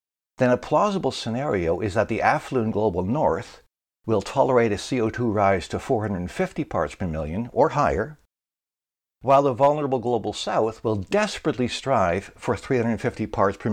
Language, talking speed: English, 150 wpm